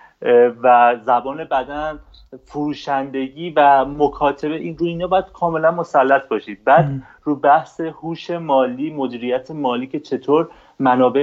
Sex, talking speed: male, 125 wpm